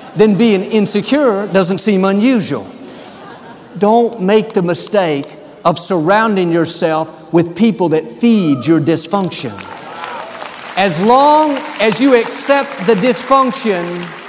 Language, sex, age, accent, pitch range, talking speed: English, male, 50-69, American, 175-225 Hz, 110 wpm